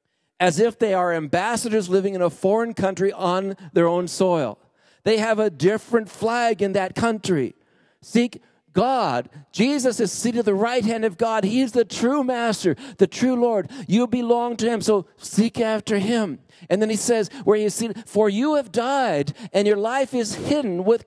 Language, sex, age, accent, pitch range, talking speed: English, male, 50-69, American, 180-235 Hz, 185 wpm